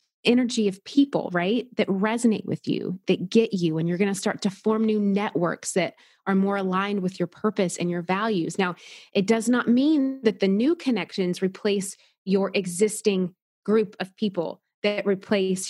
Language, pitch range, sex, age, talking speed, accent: English, 180-225 Hz, female, 30-49, 180 wpm, American